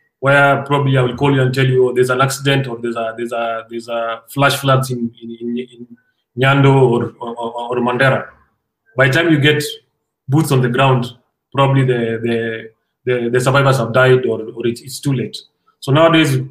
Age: 30-49